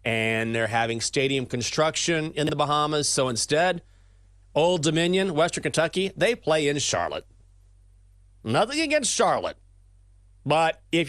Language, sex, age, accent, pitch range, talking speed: English, male, 30-49, American, 100-155 Hz, 125 wpm